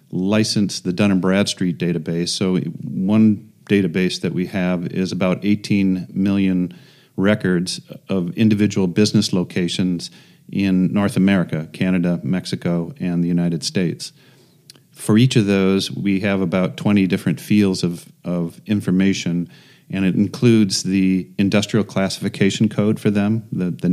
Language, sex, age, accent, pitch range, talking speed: German, male, 40-59, American, 90-105 Hz, 135 wpm